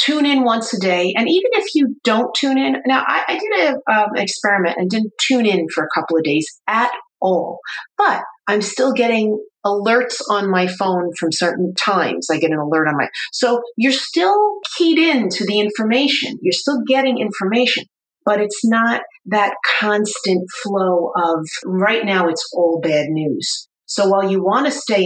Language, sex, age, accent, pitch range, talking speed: English, female, 40-59, American, 175-240 Hz, 185 wpm